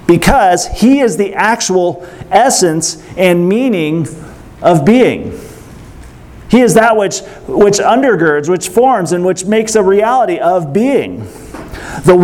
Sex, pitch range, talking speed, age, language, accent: male, 155-210 Hz, 130 wpm, 40-59, English, American